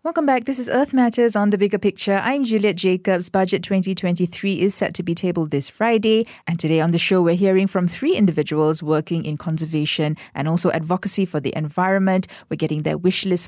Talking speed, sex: 205 wpm, female